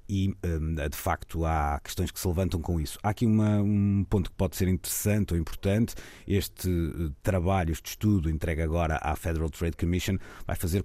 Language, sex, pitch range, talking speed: Portuguese, male, 80-95 Hz, 175 wpm